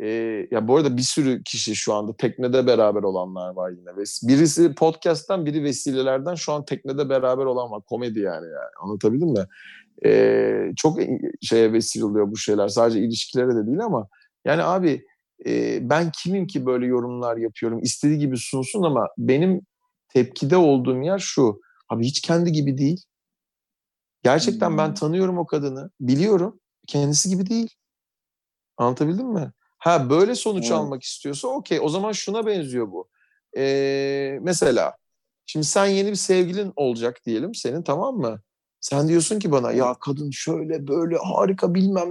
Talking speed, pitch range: 155 wpm, 120-180 Hz